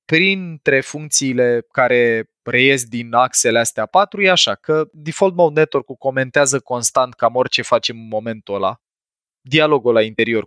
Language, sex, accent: Romanian, male, native